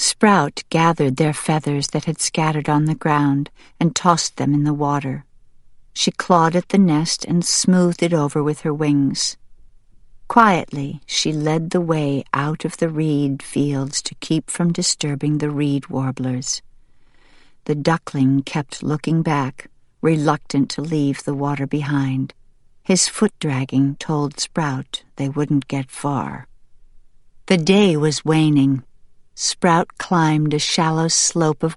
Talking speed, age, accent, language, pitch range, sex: 140 wpm, 60-79, American, English, 140-160 Hz, female